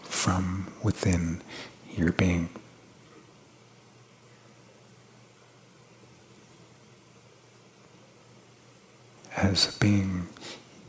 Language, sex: English, male